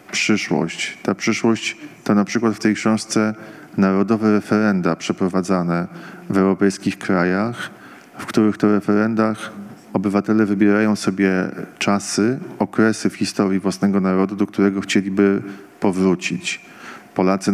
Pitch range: 100-115 Hz